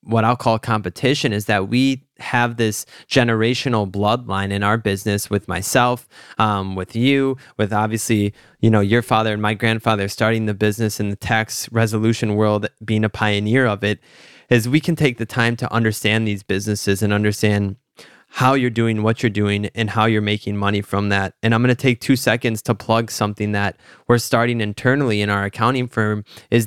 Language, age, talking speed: English, 20-39, 190 wpm